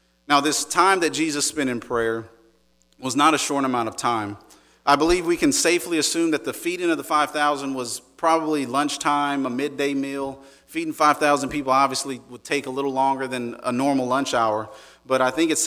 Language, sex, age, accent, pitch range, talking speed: English, male, 40-59, American, 125-145 Hz, 195 wpm